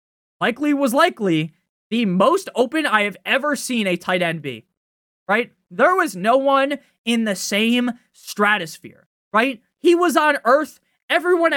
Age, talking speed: 20-39, 150 wpm